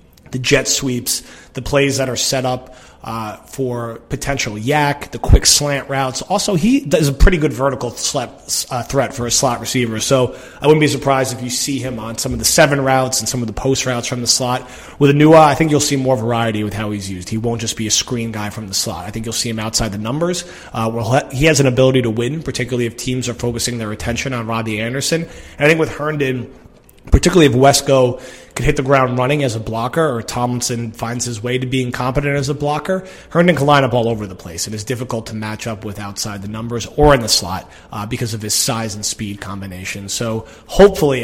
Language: English